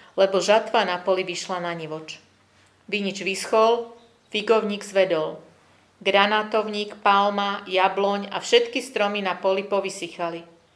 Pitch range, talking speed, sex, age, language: 175-205 Hz, 110 wpm, female, 40-59, Slovak